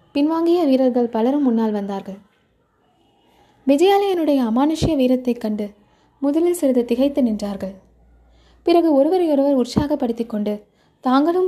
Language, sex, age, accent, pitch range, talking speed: Tamil, female, 20-39, native, 220-285 Hz, 95 wpm